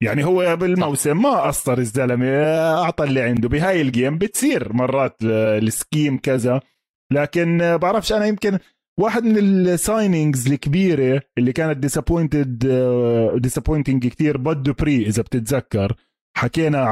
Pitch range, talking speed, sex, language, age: 125-160 Hz, 115 wpm, male, Arabic, 20-39